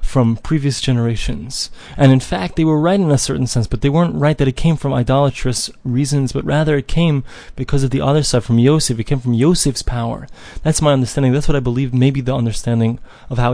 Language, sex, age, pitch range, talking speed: English, male, 20-39, 125-155 Hz, 225 wpm